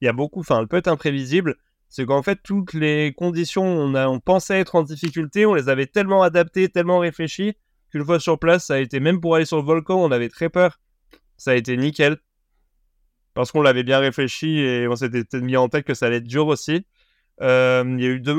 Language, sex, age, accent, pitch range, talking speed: French, male, 20-39, French, 120-155 Hz, 235 wpm